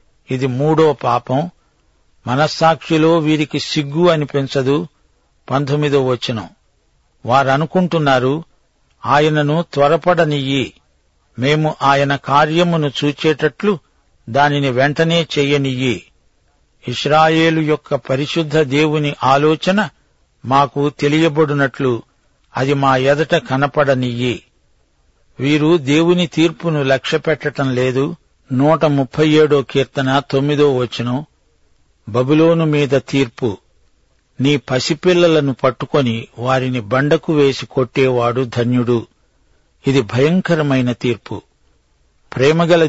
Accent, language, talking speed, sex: native, Telugu, 80 wpm, male